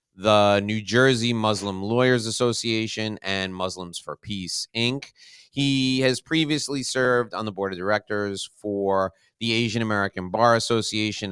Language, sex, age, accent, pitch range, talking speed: English, male, 30-49, American, 100-140 Hz, 140 wpm